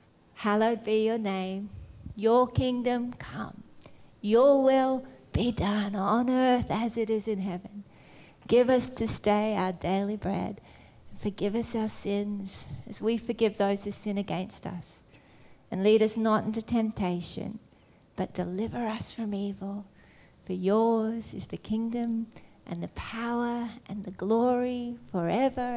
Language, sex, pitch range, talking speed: English, female, 205-255 Hz, 140 wpm